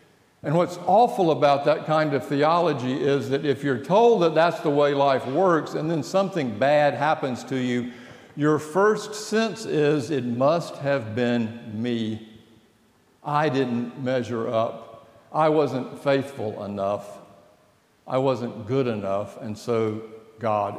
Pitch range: 115-150 Hz